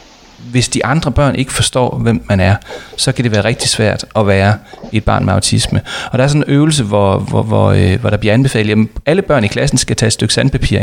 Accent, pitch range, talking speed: Danish, 110-135 Hz, 235 wpm